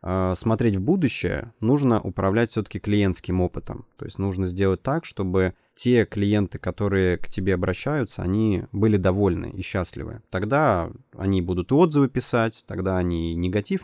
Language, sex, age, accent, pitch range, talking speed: Russian, male, 20-39, native, 95-115 Hz, 150 wpm